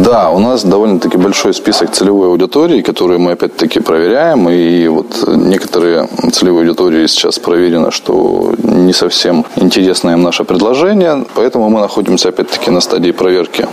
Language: Russian